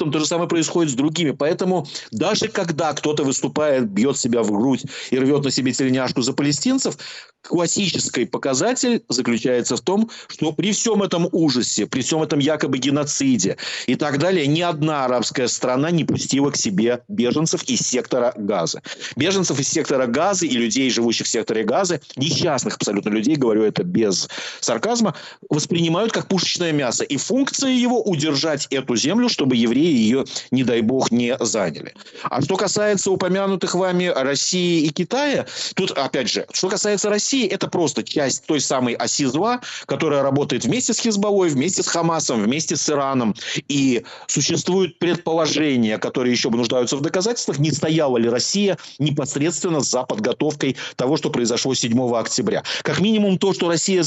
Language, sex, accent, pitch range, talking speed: Russian, male, native, 135-190 Hz, 160 wpm